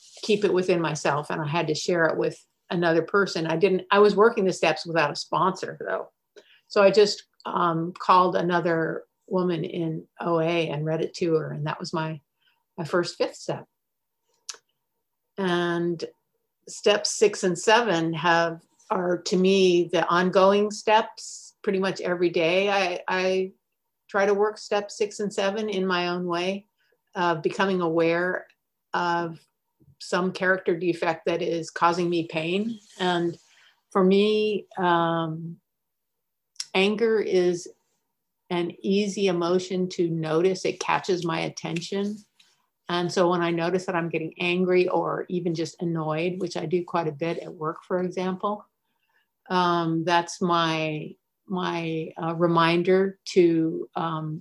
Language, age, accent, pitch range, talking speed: English, 50-69, American, 170-195 Hz, 150 wpm